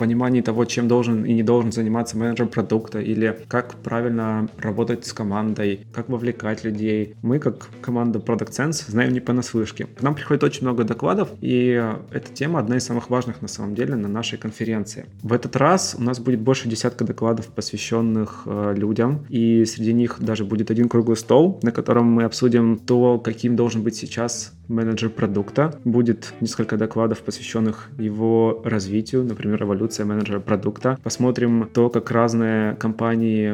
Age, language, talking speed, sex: 20-39, Russian, 160 wpm, male